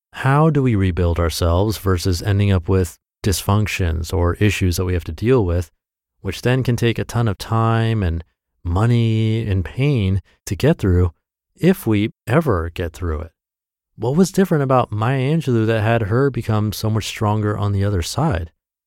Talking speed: 180 wpm